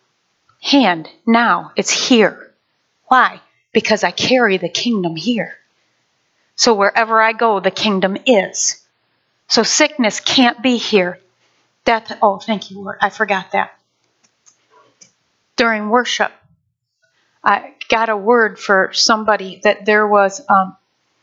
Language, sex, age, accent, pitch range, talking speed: English, female, 40-59, American, 195-225 Hz, 120 wpm